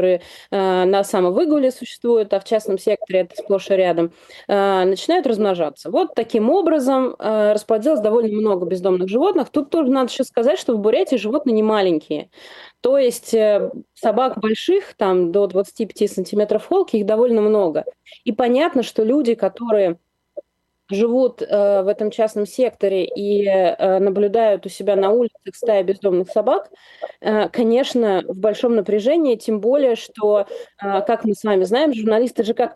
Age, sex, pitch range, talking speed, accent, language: 20-39, female, 195-255 Hz, 150 wpm, native, Russian